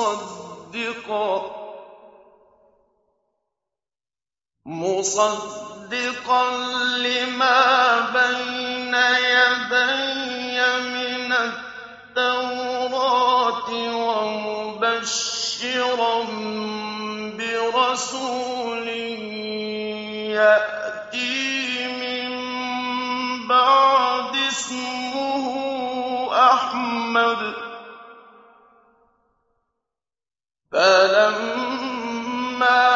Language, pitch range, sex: Arabic, 230-255 Hz, male